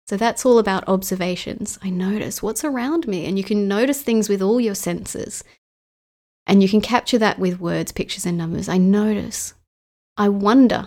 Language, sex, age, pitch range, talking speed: English, female, 30-49, 190-225 Hz, 180 wpm